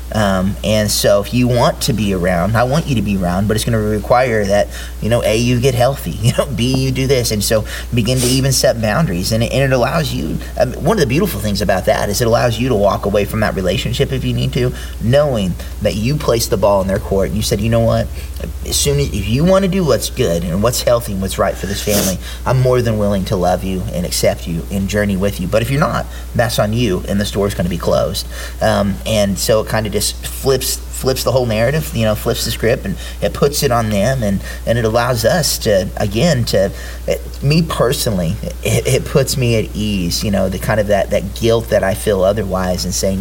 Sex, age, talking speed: male, 30-49, 255 wpm